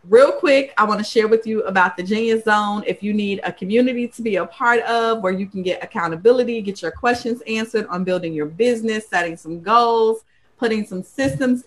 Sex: female